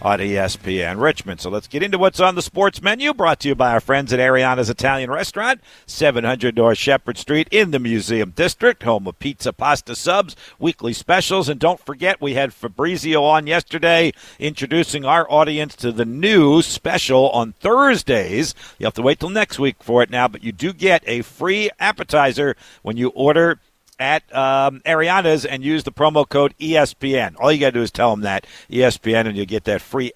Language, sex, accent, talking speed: English, male, American, 195 wpm